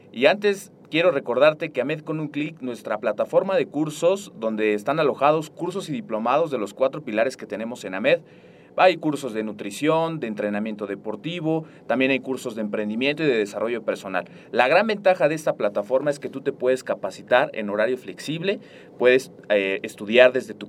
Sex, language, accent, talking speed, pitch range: male, Spanish, Mexican, 185 wpm, 125-165 Hz